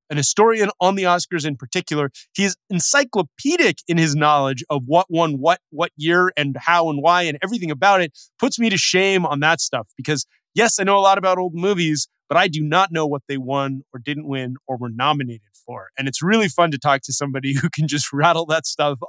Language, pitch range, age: English, 135-180 Hz, 30-49